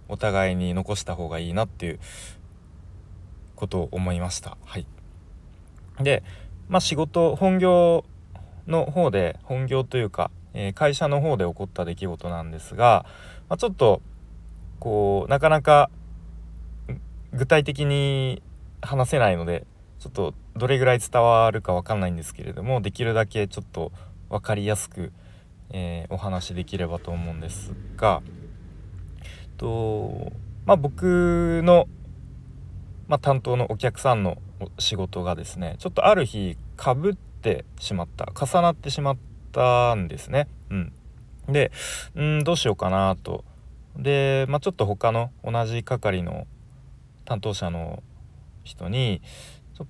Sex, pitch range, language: male, 90-130 Hz, Japanese